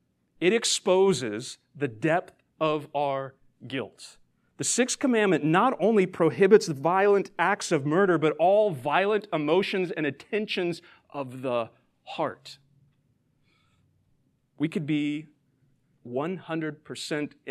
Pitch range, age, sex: 140-190 Hz, 40-59, male